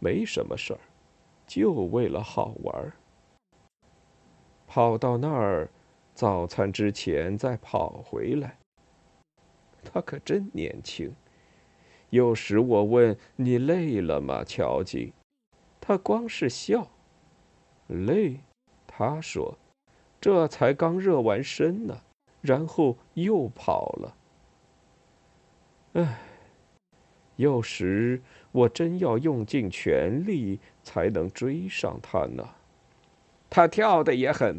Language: Chinese